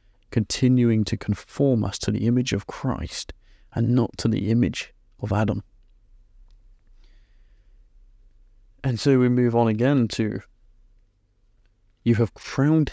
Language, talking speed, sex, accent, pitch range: English, 120 wpm, male, British, 100-115 Hz